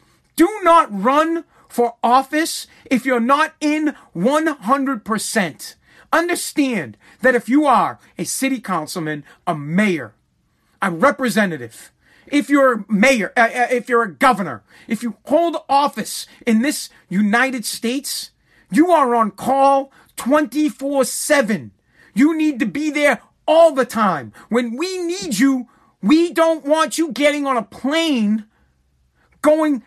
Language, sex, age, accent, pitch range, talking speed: English, male, 40-59, American, 225-290 Hz, 125 wpm